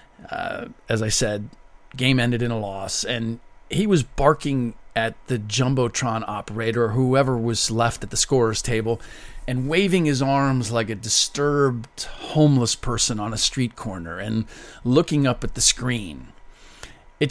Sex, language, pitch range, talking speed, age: male, English, 115-145 Hz, 155 wpm, 40-59